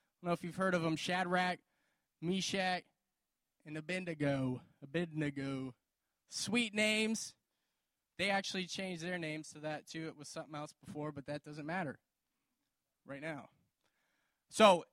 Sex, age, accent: male, 20-39, American